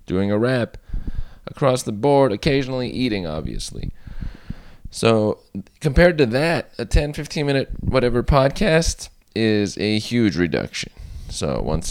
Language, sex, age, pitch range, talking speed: English, male, 20-39, 95-125 Hz, 120 wpm